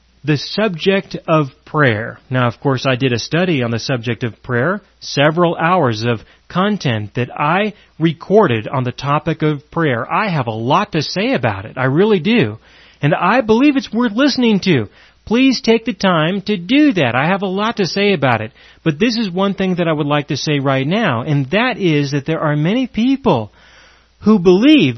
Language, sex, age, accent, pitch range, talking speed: English, male, 30-49, American, 135-210 Hz, 200 wpm